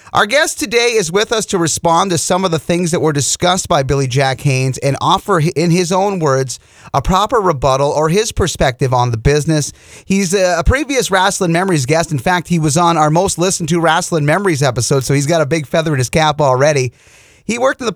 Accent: American